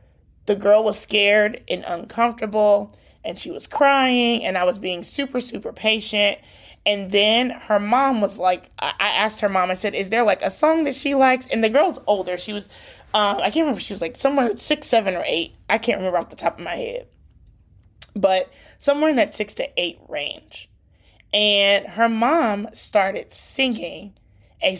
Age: 20-39